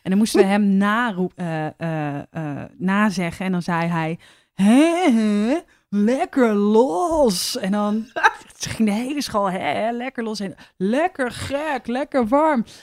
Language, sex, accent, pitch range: Dutch, female, Dutch, 180-235 Hz